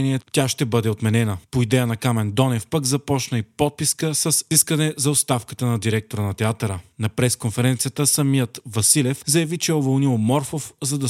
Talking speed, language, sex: 175 wpm, Bulgarian, male